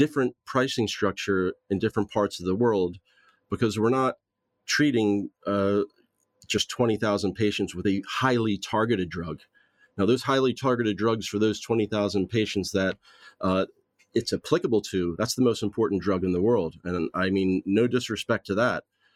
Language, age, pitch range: English, 40-59, 95-115 Hz